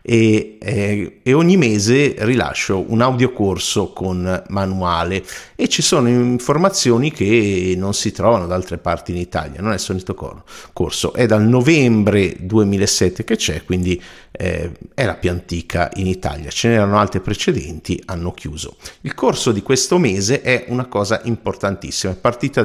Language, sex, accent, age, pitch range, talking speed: Italian, male, native, 50-69, 95-120 Hz, 160 wpm